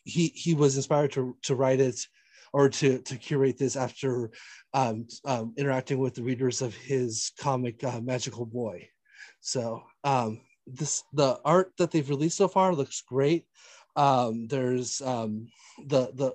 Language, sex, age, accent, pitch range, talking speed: English, male, 30-49, American, 130-160 Hz, 160 wpm